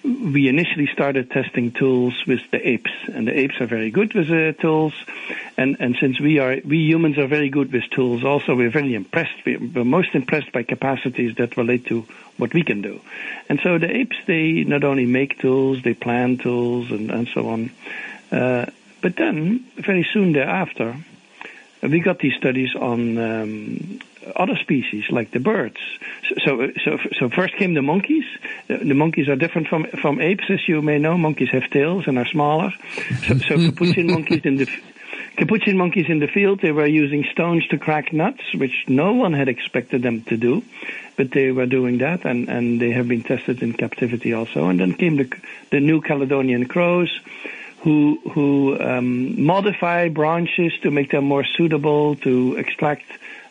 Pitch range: 125-165 Hz